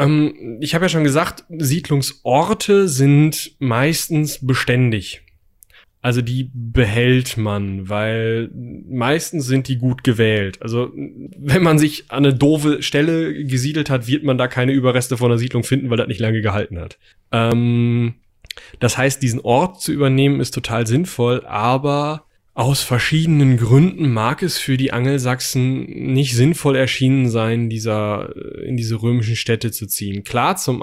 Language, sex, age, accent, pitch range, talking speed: German, male, 10-29, German, 115-140 Hz, 150 wpm